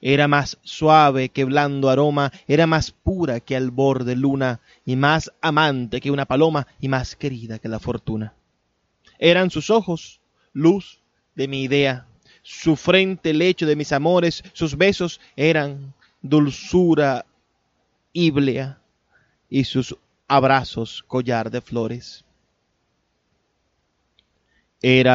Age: 30-49